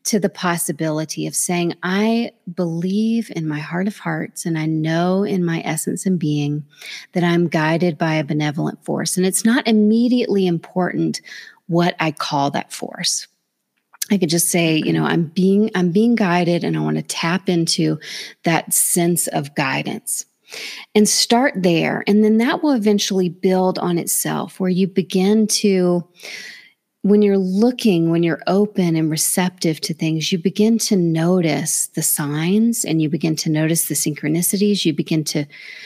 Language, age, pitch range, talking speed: English, 30-49, 160-205 Hz, 165 wpm